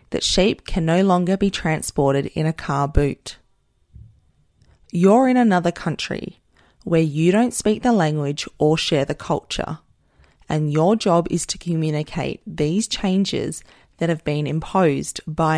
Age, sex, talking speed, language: 20-39, female, 145 wpm, English